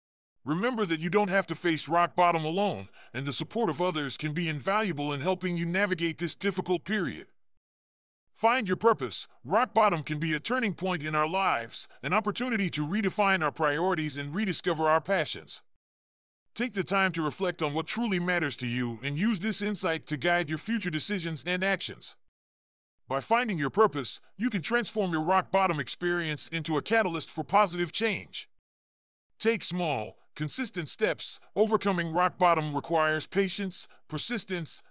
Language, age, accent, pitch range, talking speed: English, 40-59, American, 150-195 Hz, 165 wpm